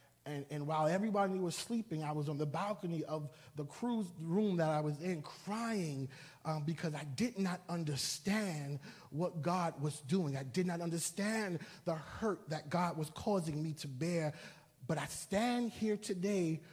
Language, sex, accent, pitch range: English, male, American, 150-195 Hz